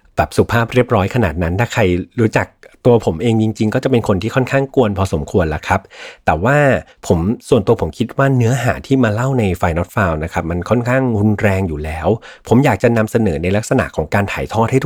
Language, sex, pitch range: Thai, male, 95-125 Hz